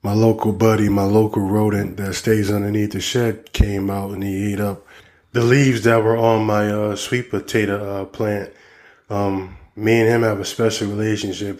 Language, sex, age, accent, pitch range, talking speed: English, male, 20-39, American, 100-110 Hz, 185 wpm